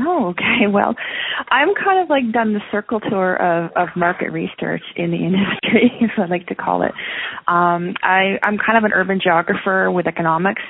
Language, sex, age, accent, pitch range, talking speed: English, female, 20-39, American, 170-195 Hz, 190 wpm